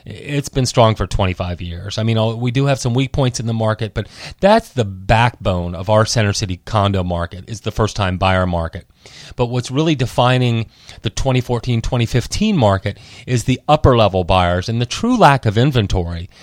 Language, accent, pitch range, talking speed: English, American, 105-140 Hz, 180 wpm